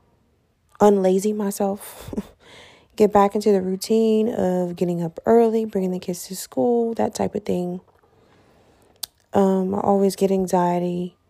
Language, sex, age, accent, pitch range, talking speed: English, female, 20-39, American, 170-200 Hz, 135 wpm